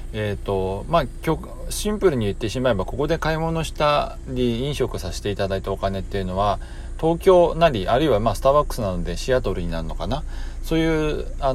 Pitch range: 95-130 Hz